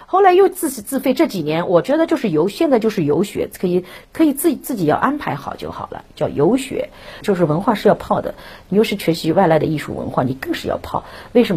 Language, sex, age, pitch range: Chinese, female, 50-69, 165-265 Hz